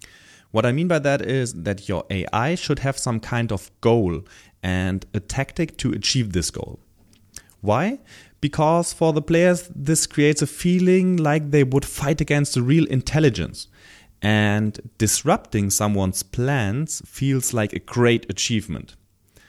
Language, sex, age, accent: English, male, 30-49, German